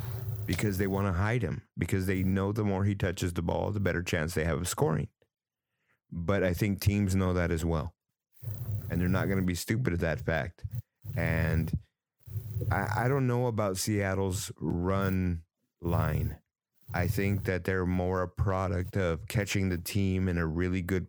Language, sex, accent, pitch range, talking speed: English, male, American, 85-100 Hz, 180 wpm